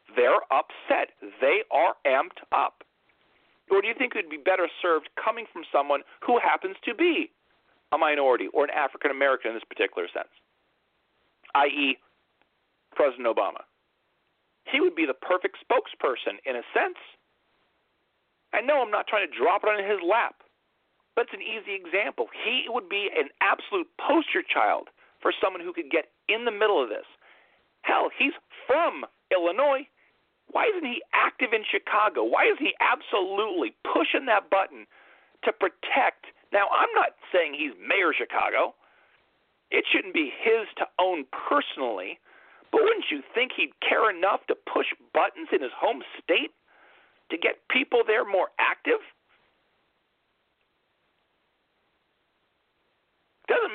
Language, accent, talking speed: English, American, 145 wpm